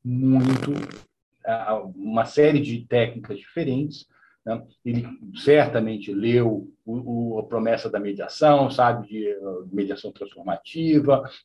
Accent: Brazilian